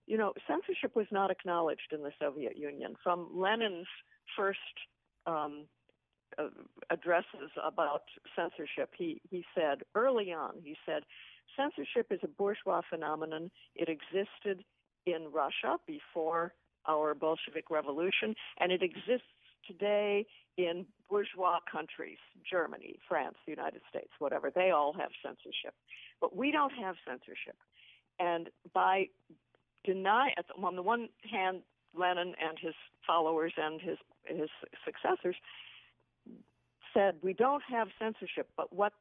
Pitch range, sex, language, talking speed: 170-230 Hz, female, English, 125 wpm